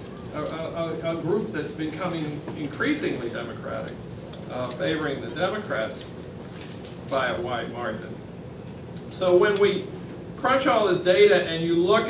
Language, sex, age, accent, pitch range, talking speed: English, male, 50-69, American, 150-175 Hz, 125 wpm